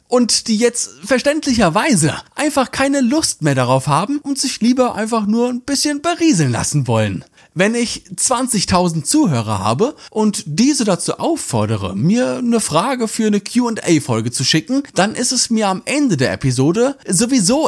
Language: German